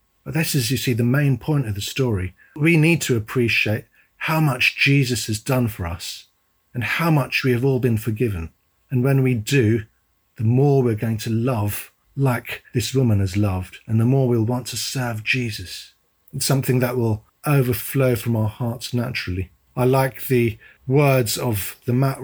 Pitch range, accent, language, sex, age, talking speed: 105-130 Hz, British, English, male, 40-59, 185 wpm